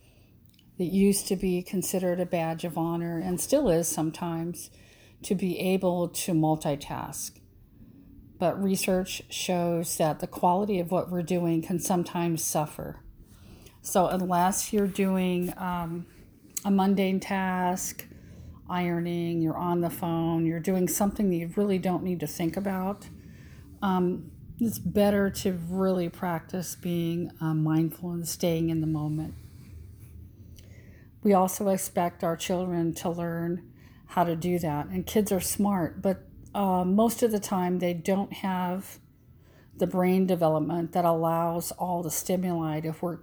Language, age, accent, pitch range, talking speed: English, 50-69, American, 155-185 Hz, 145 wpm